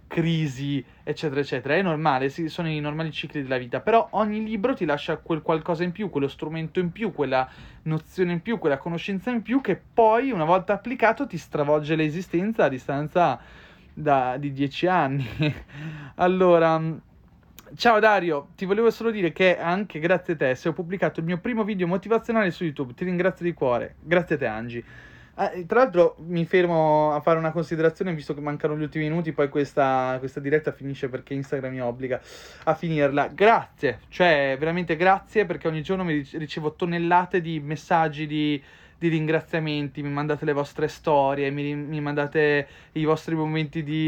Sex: male